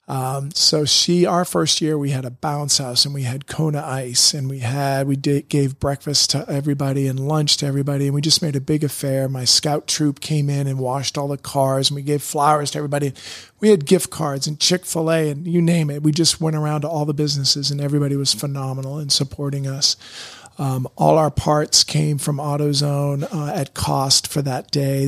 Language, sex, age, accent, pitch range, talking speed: English, male, 40-59, American, 135-150 Hz, 215 wpm